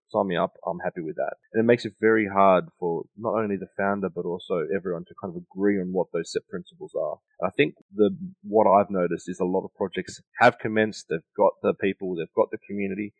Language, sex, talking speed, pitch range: English, male, 240 wpm, 90-115 Hz